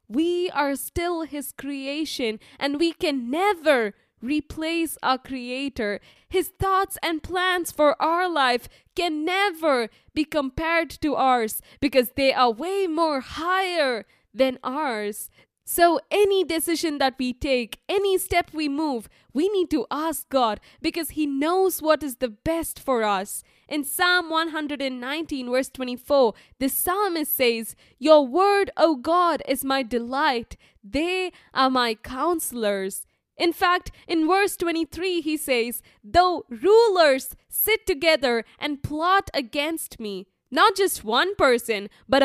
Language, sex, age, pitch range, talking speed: English, female, 10-29, 260-345 Hz, 135 wpm